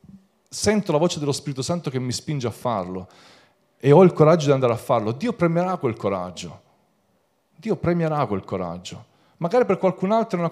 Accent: native